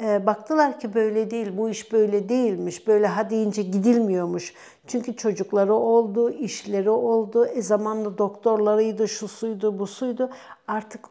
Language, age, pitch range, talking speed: Turkish, 60-79, 210-240 Hz, 135 wpm